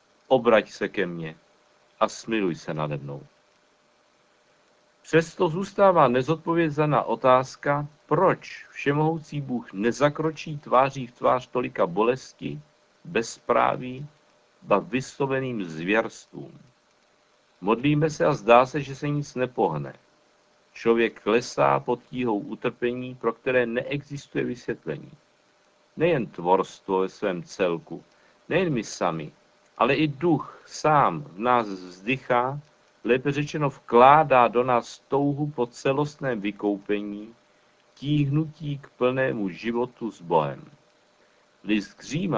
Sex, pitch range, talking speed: male, 115-145 Hz, 105 wpm